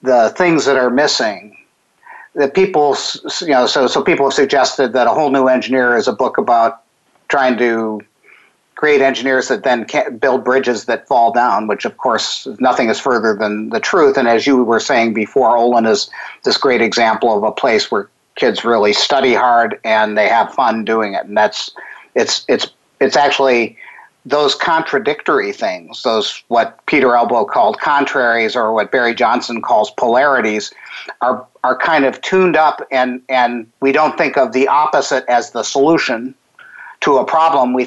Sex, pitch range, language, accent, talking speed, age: male, 115-140 Hz, English, American, 175 wpm, 50-69